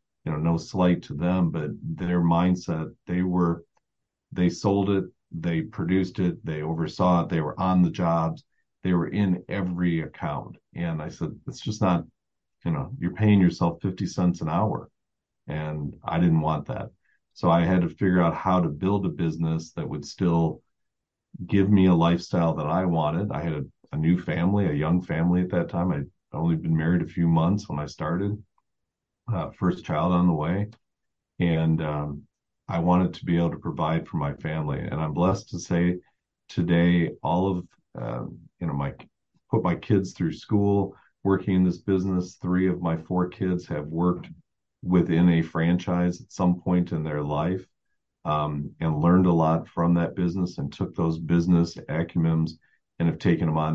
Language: English